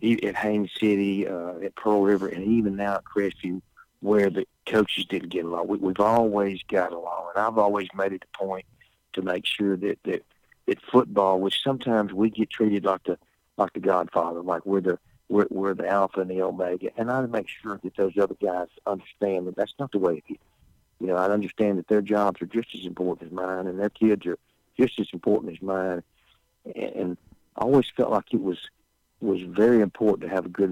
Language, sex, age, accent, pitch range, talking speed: English, male, 50-69, American, 90-105 Hz, 215 wpm